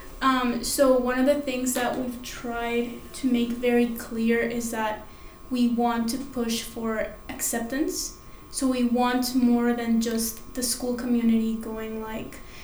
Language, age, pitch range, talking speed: English, 20-39, 230-255 Hz, 145 wpm